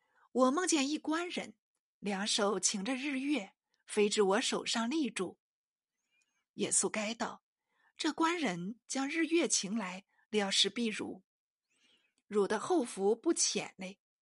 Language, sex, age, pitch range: Chinese, female, 50-69, 205-290 Hz